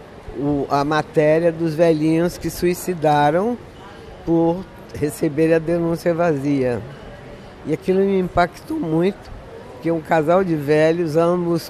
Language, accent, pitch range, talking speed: Portuguese, Brazilian, 145-175 Hz, 115 wpm